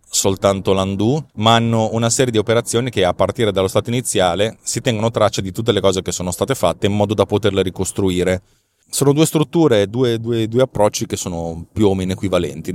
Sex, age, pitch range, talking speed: male, 30-49, 95-120 Hz, 200 wpm